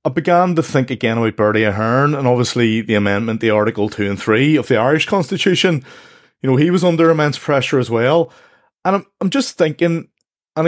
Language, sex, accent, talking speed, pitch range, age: English, male, Irish, 200 wpm, 115-150 Hz, 30-49